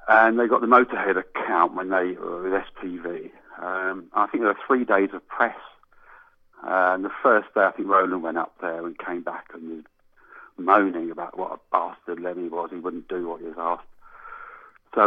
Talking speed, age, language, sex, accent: 200 wpm, 40-59, English, male, British